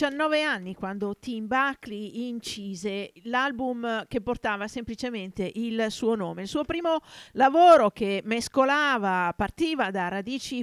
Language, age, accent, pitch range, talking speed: Italian, 50-69, native, 195-250 Hz, 120 wpm